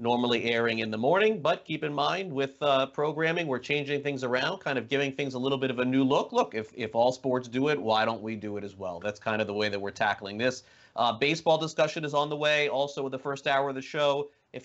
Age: 30-49